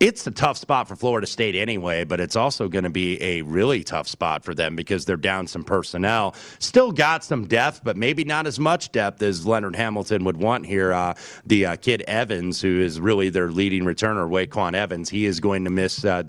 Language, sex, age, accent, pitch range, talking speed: English, male, 30-49, American, 95-125 Hz, 220 wpm